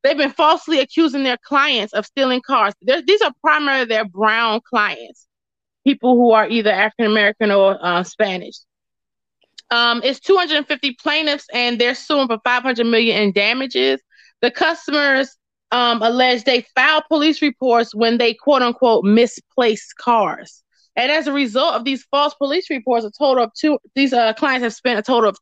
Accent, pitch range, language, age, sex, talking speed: American, 225-285 Hz, English, 20-39, female, 165 wpm